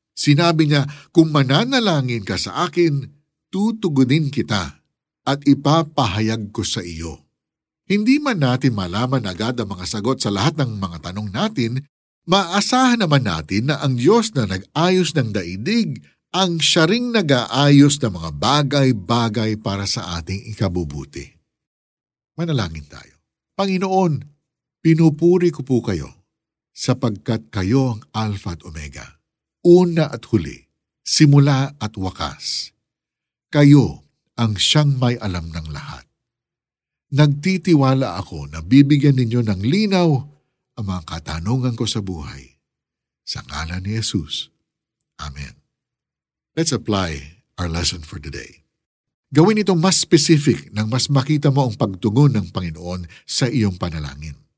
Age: 50-69